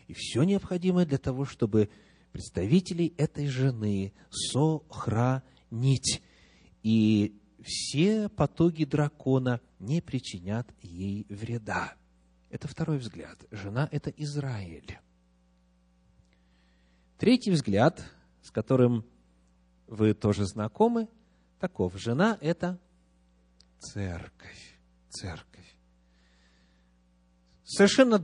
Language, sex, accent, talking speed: Russian, male, native, 85 wpm